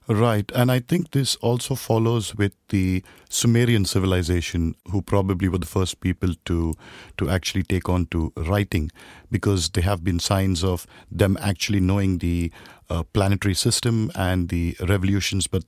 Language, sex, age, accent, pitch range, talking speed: English, male, 50-69, Indian, 95-110 Hz, 155 wpm